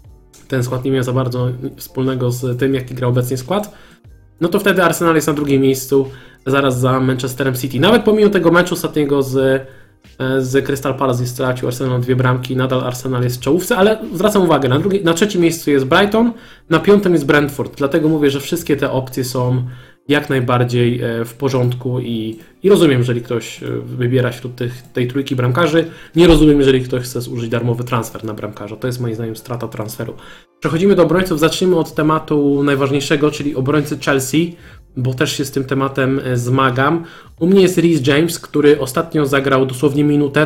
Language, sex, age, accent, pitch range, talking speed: Polish, male, 20-39, native, 125-155 Hz, 180 wpm